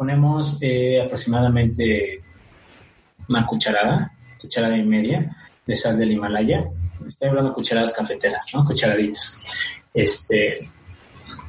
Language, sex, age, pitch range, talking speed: Spanish, male, 30-49, 100-125 Hz, 110 wpm